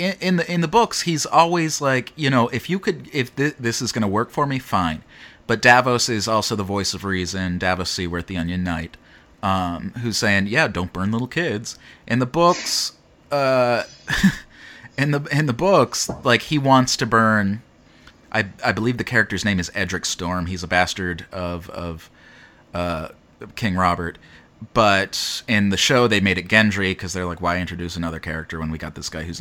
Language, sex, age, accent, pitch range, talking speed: English, male, 30-49, American, 85-115 Hz, 195 wpm